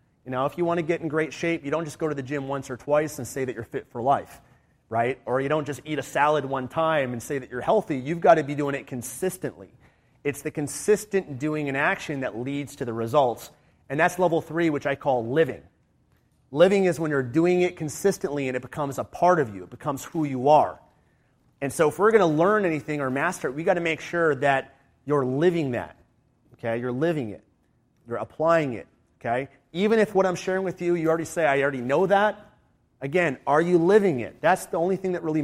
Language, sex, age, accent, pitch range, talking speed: English, male, 30-49, American, 130-170 Hz, 235 wpm